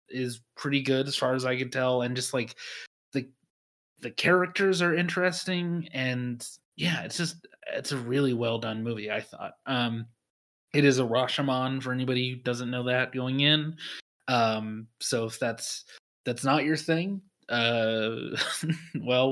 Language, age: English, 20-39